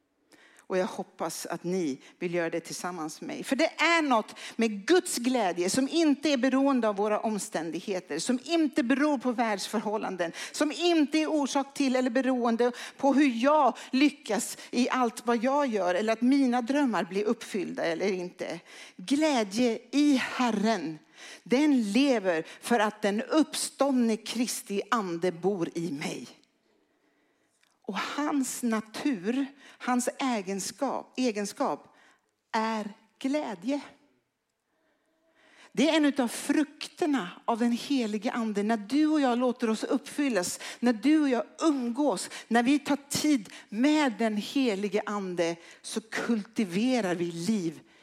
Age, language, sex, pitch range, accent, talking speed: 60-79, Swedish, female, 210-280 Hz, native, 135 wpm